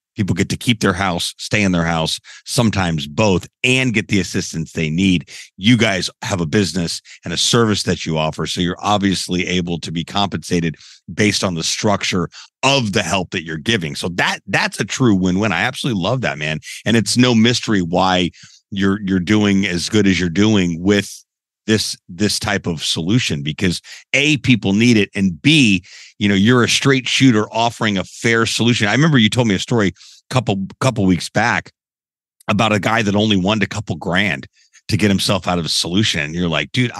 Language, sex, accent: English, male, American